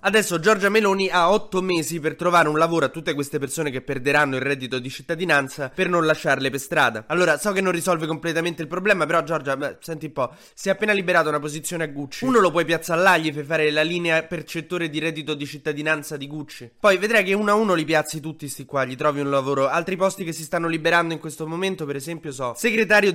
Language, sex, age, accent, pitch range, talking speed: Italian, male, 20-39, native, 150-180 Hz, 235 wpm